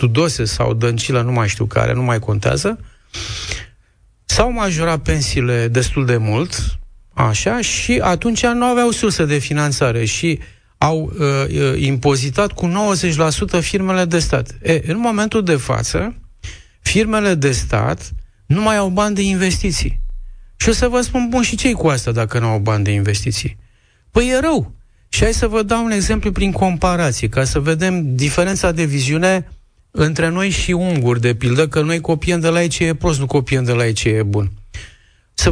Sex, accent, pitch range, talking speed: male, native, 115-180 Hz, 180 wpm